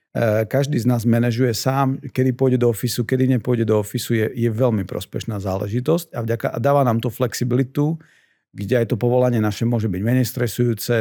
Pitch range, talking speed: 110-130 Hz, 185 wpm